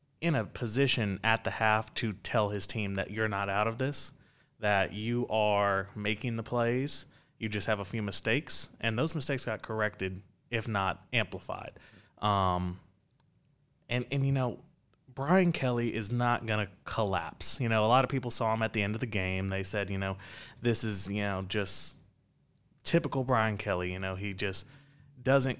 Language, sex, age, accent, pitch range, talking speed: English, male, 20-39, American, 100-130 Hz, 185 wpm